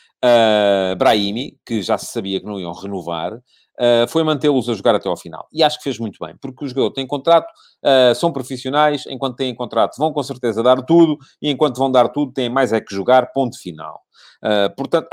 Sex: male